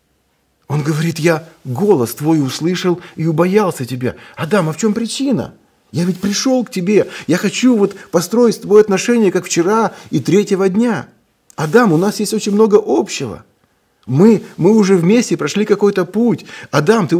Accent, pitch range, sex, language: native, 145-205 Hz, male, Russian